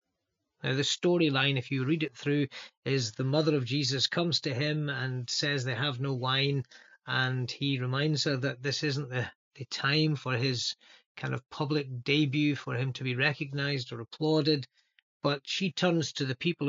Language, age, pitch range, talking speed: English, 40-59, 135-175 Hz, 185 wpm